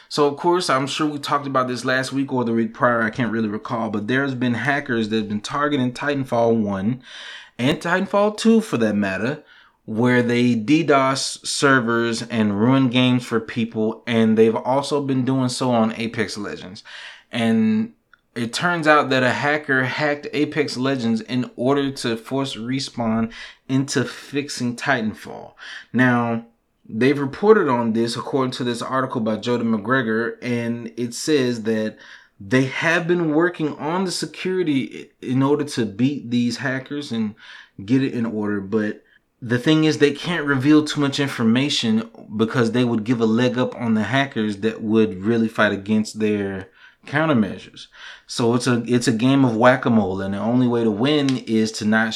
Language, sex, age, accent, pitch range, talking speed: English, male, 20-39, American, 115-140 Hz, 170 wpm